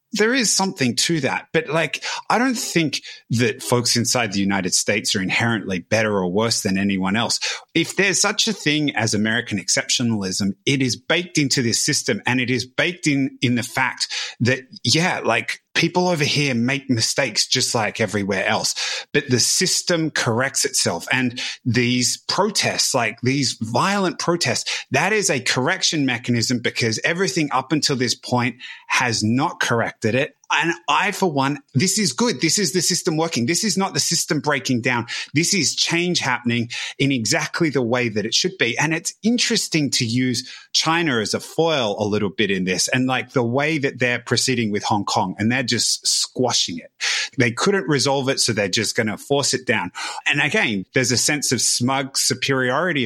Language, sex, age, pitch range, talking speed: English, male, 30-49, 120-165 Hz, 185 wpm